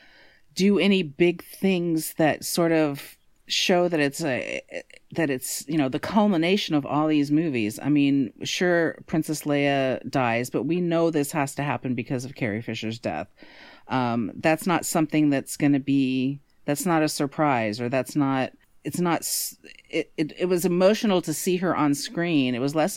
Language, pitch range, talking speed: English, 135-170 Hz, 180 wpm